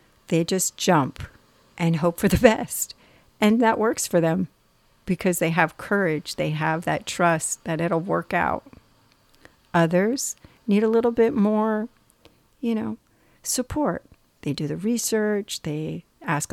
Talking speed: 145 wpm